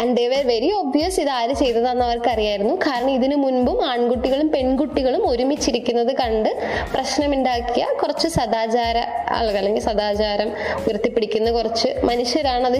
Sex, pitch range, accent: female, 210-285 Hz, native